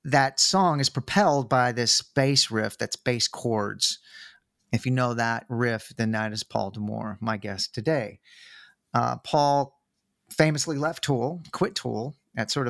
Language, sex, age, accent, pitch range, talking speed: English, male, 40-59, American, 110-140 Hz, 155 wpm